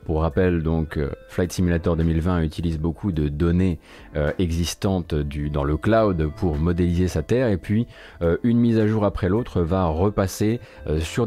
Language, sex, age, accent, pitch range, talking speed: French, male, 30-49, French, 80-100 Hz, 175 wpm